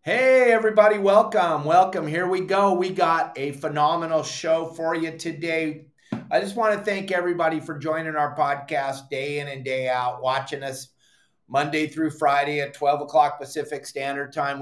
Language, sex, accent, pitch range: English, male, American, 145-170 Hz